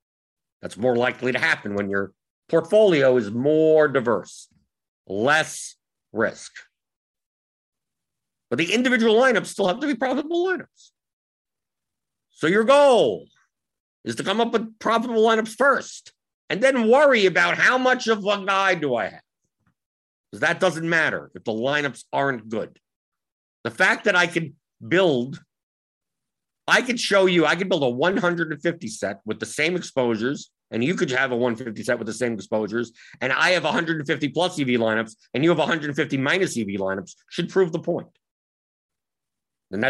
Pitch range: 115-185 Hz